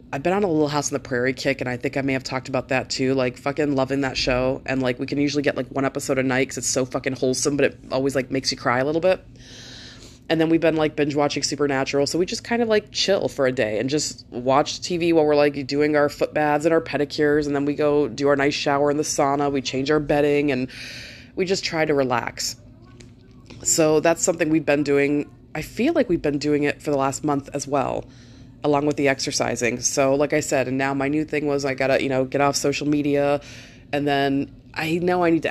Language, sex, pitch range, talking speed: English, female, 130-155 Hz, 260 wpm